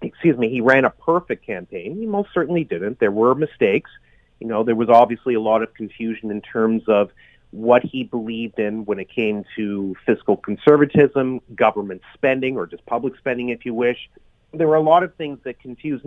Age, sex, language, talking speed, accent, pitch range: 40-59, male, English, 200 wpm, American, 115-160 Hz